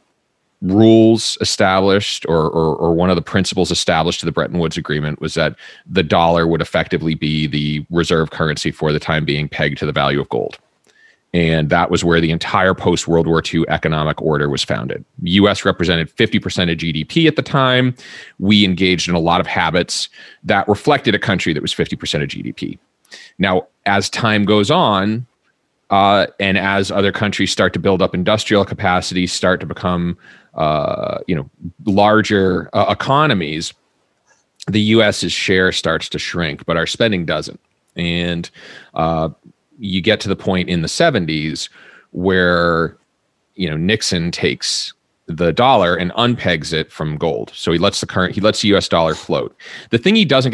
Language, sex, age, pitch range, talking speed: English, male, 30-49, 80-105 Hz, 175 wpm